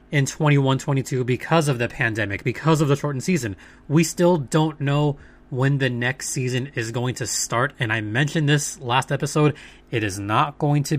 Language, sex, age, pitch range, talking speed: English, male, 20-39, 120-155 Hz, 190 wpm